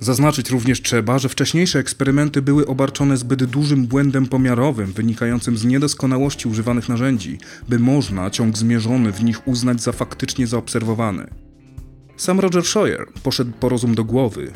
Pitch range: 115-155 Hz